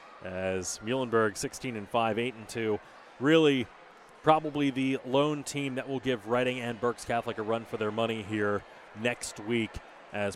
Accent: American